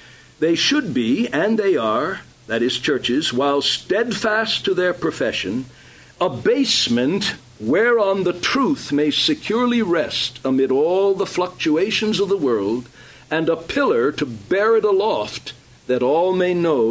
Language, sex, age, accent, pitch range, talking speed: English, male, 60-79, American, 130-215 Hz, 140 wpm